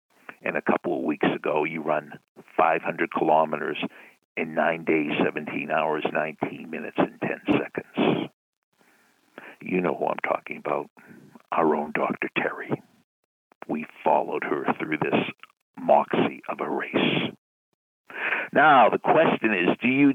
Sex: male